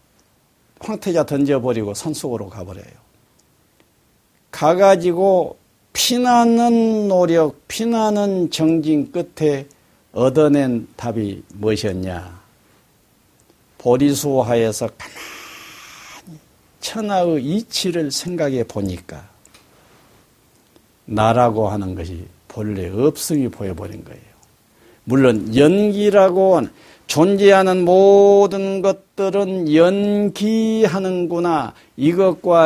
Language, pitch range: Korean, 120-195 Hz